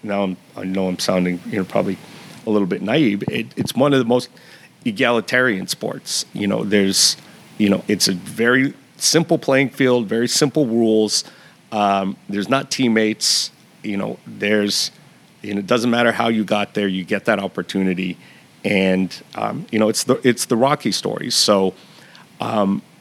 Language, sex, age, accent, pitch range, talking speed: English, male, 40-59, American, 100-125 Hz, 165 wpm